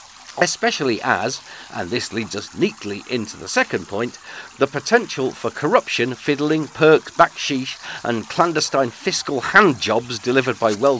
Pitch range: 115-155 Hz